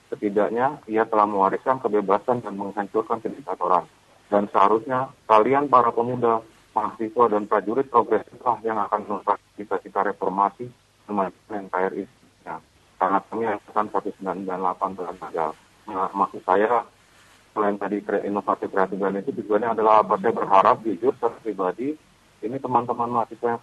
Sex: male